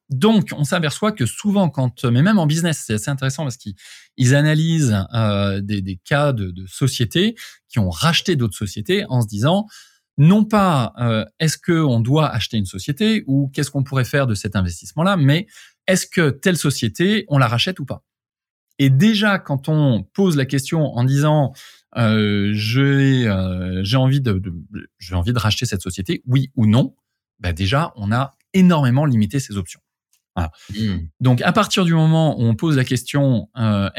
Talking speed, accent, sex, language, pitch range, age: 180 wpm, French, male, French, 105-145 Hz, 20-39